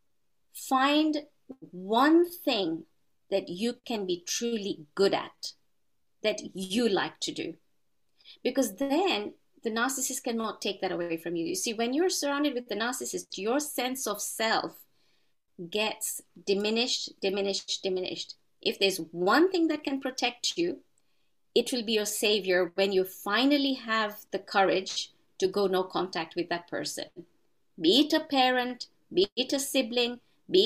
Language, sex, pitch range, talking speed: English, female, 195-270 Hz, 150 wpm